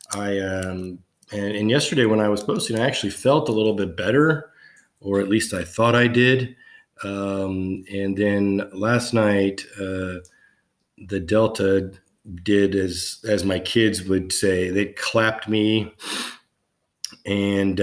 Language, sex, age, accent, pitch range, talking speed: English, male, 40-59, American, 95-110 Hz, 140 wpm